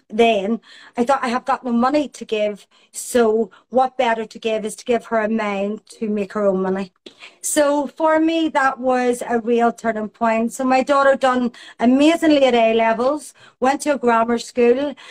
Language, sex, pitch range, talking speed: English, female, 220-265 Hz, 190 wpm